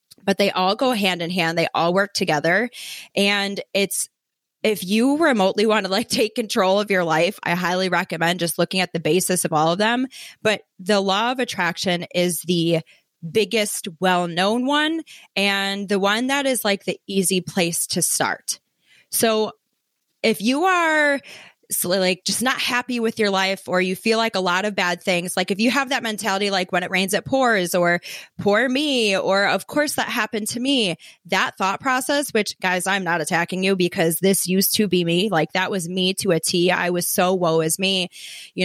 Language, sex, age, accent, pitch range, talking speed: English, female, 20-39, American, 175-215 Hz, 200 wpm